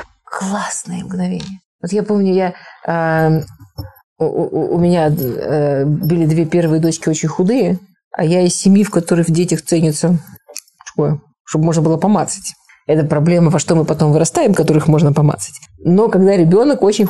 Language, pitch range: Russian, 170-210 Hz